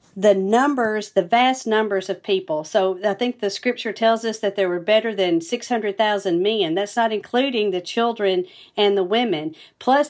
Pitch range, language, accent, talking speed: 195-235 Hz, English, American, 180 wpm